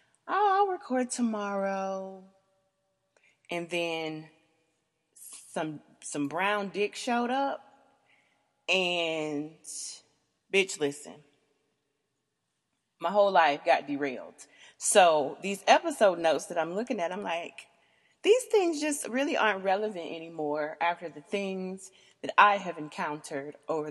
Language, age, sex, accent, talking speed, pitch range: English, 30-49, female, American, 115 wpm, 165-240 Hz